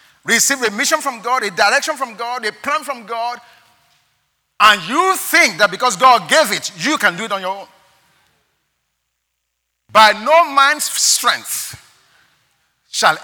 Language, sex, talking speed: English, male, 150 wpm